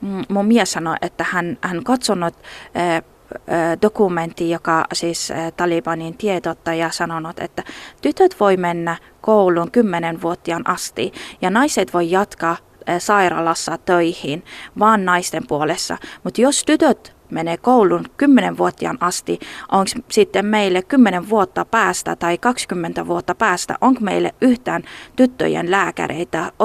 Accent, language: native, Finnish